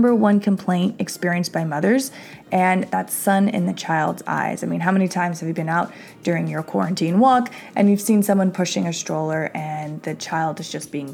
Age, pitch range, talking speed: 20-39, 165-200 Hz, 210 wpm